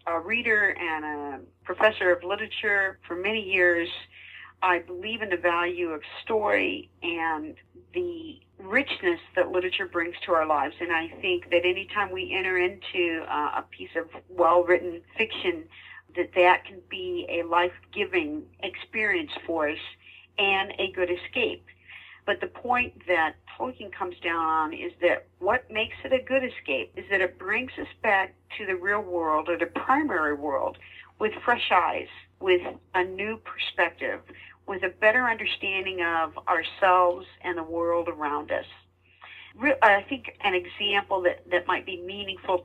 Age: 50-69